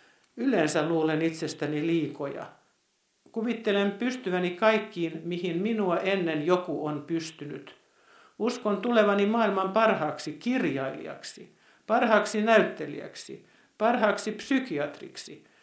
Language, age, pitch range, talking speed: Finnish, 60-79, 155-195 Hz, 85 wpm